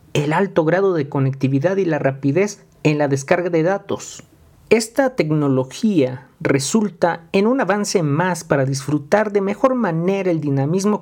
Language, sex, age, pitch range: Spanish, male, 40-59, 140-200 Hz